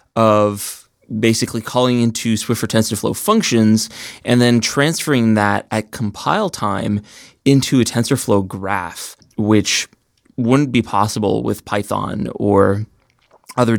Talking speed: 120 wpm